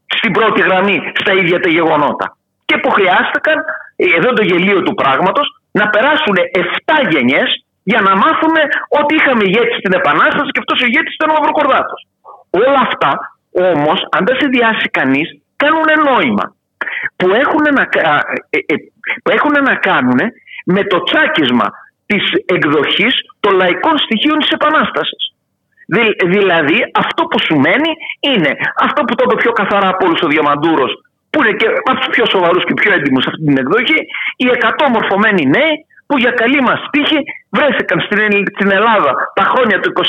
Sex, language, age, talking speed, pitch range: male, Greek, 50-69, 150 wpm, 200-305 Hz